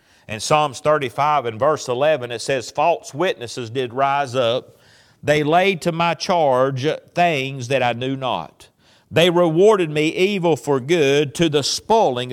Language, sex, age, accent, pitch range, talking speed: English, male, 50-69, American, 145-185 Hz, 155 wpm